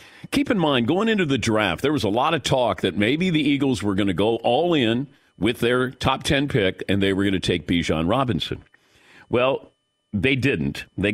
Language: English